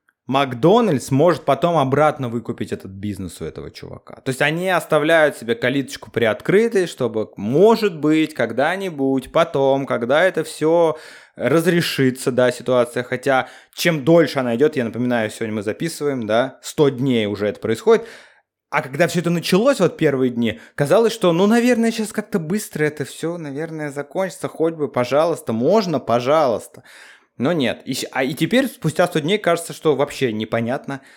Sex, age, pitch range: male, 20-39, 120-170 Hz